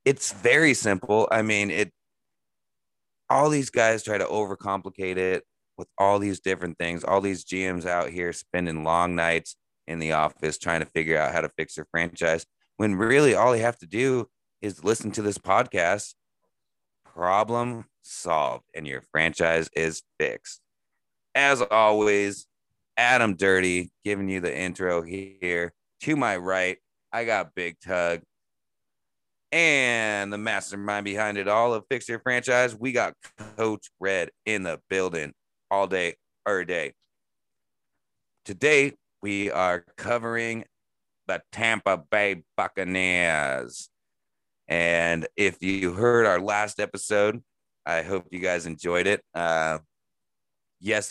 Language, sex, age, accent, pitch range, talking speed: English, male, 30-49, American, 90-105 Hz, 135 wpm